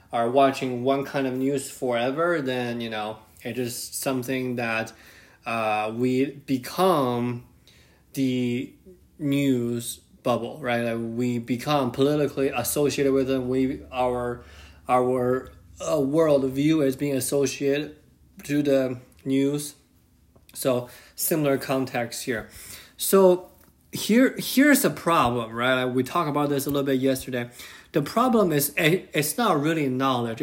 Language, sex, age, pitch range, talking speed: English, male, 20-39, 125-145 Hz, 130 wpm